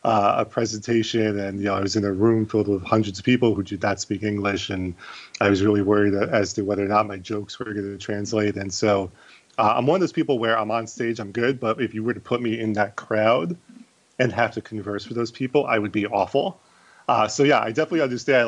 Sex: male